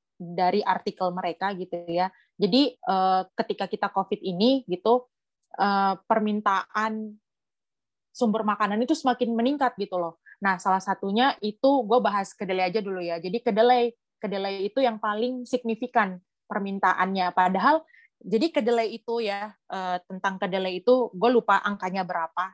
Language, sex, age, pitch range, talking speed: Indonesian, female, 20-39, 195-240 Hz, 135 wpm